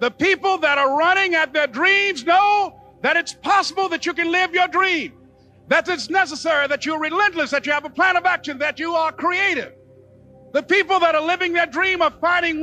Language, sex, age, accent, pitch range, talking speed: English, male, 50-69, American, 295-360 Hz, 210 wpm